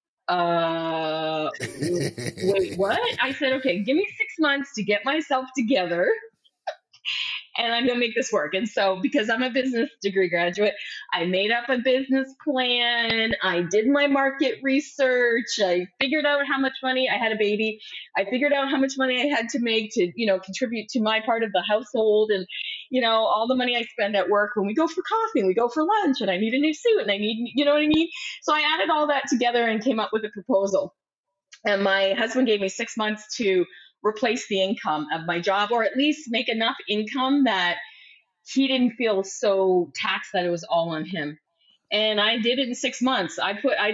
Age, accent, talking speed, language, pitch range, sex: 20-39, American, 215 wpm, English, 195-270 Hz, female